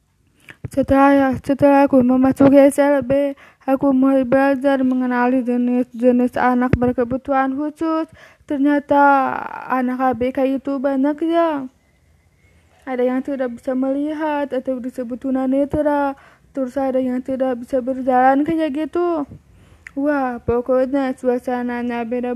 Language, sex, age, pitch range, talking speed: Indonesian, female, 20-39, 255-285 Hz, 105 wpm